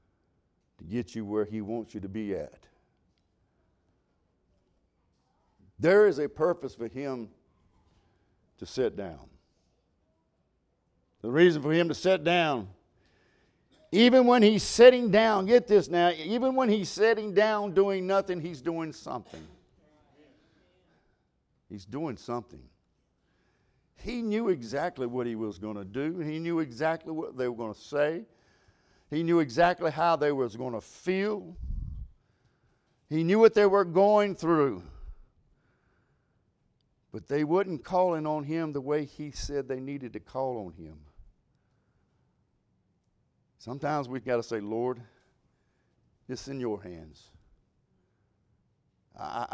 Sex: male